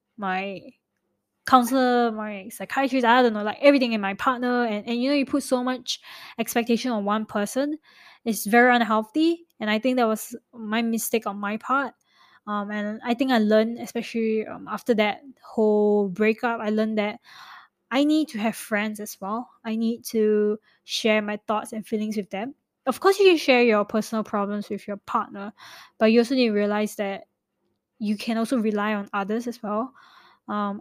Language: English